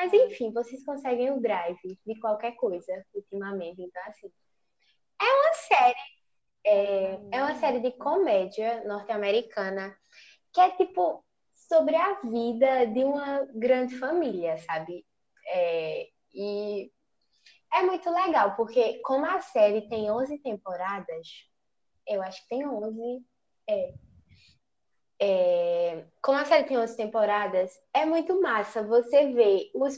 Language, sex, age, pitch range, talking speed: Portuguese, female, 10-29, 210-310 Hz, 125 wpm